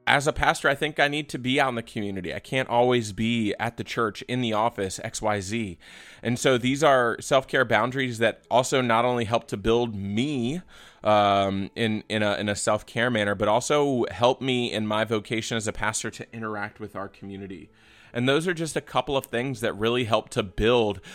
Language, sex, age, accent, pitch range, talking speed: English, male, 20-39, American, 105-130 Hz, 210 wpm